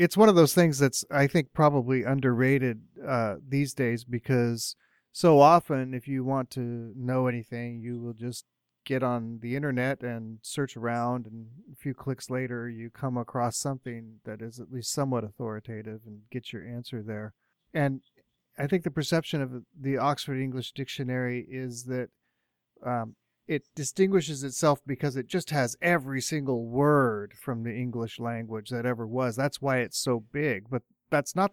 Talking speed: 170 wpm